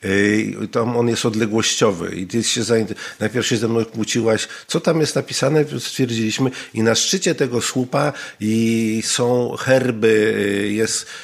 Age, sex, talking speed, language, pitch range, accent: 50-69, male, 150 wpm, Polish, 100-125 Hz, native